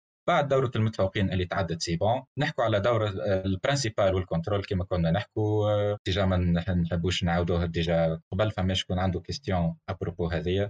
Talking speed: 145 wpm